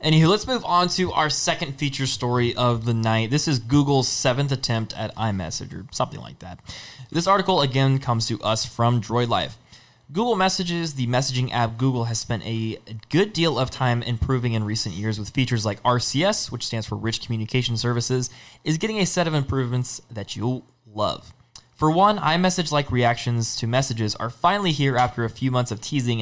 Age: 20-39